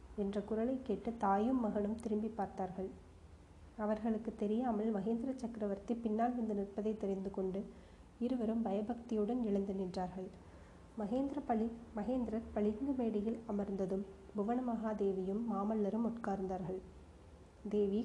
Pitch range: 200-230 Hz